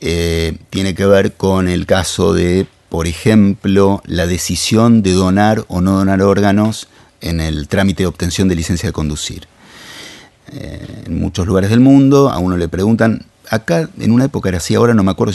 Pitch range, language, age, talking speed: 85-110 Hz, Spanish, 30-49, 185 wpm